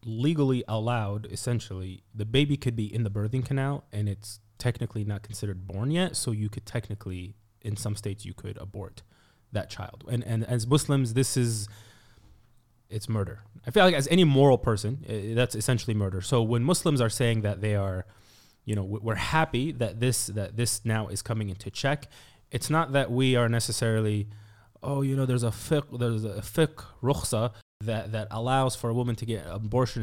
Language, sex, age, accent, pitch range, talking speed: English, male, 20-39, American, 105-130 Hz, 190 wpm